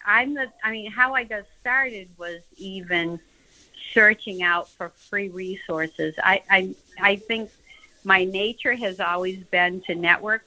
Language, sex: English, female